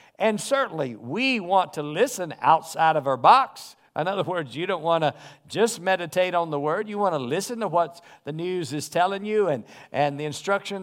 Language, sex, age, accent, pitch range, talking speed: English, male, 50-69, American, 160-215 Hz, 205 wpm